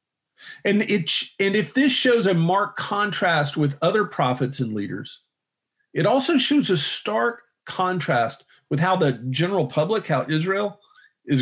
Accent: American